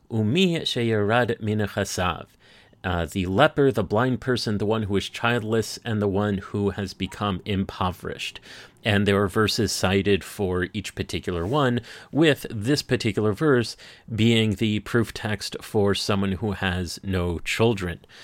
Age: 30-49